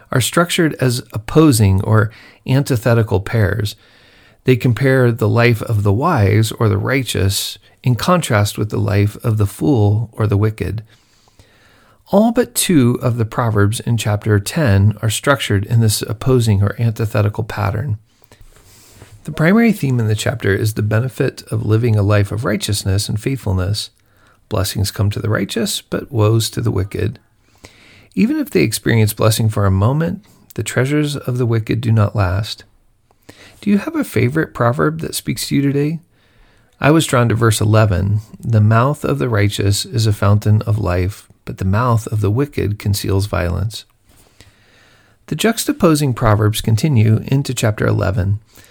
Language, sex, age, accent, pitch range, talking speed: English, male, 40-59, American, 105-125 Hz, 160 wpm